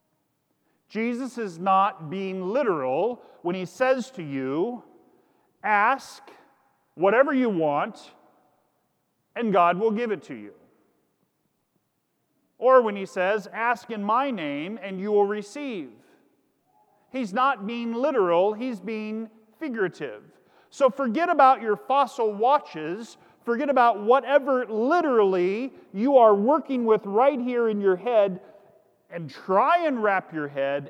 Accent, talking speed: American, 125 wpm